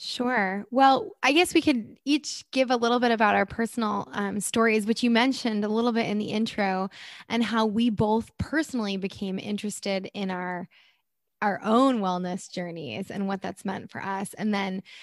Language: English